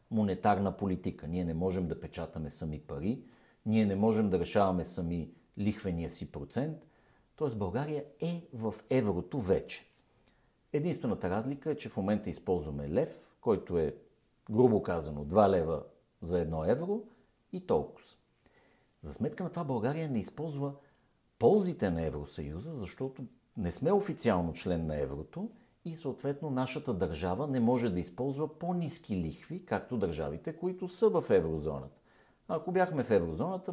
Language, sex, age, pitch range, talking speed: Bulgarian, male, 50-69, 90-145 Hz, 145 wpm